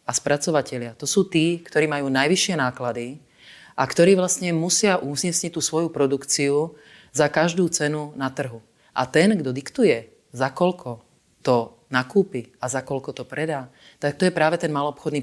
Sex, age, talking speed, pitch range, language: female, 30-49, 160 wpm, 135-170 Hz, Czech